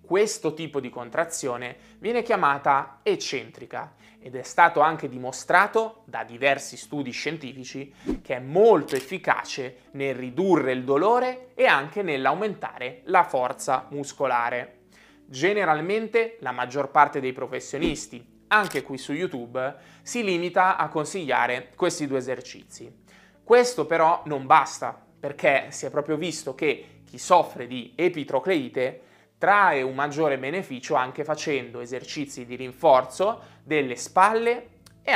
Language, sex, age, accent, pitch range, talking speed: Italian, male, 20-39, native, 130-180 Hz, 125 wpm